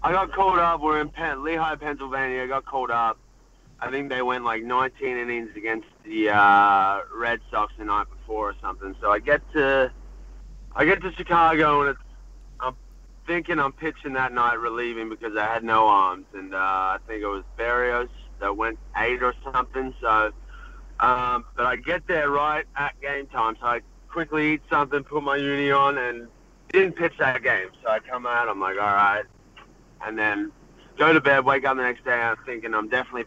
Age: 30-49